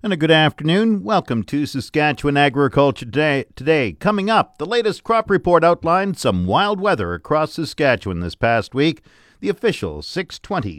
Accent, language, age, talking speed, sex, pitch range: American, English, 50-69, 155 wpm, male, 110-160 Hz